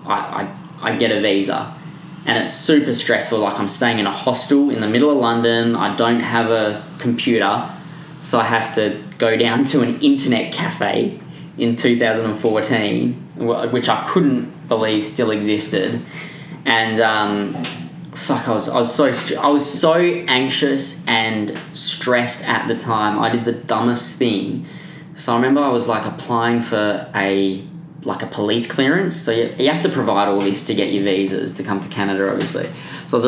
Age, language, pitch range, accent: 20-39, English, 105-155 Hz, Australian